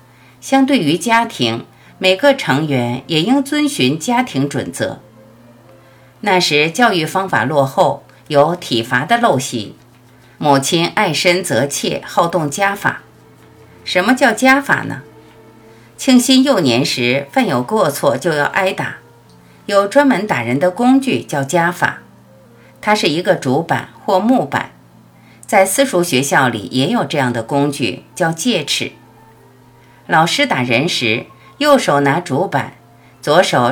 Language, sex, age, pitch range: Chinese, female, 50-69, 125-185 Hz